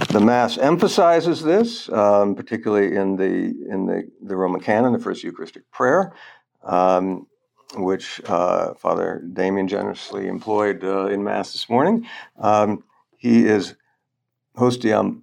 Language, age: English, 60-79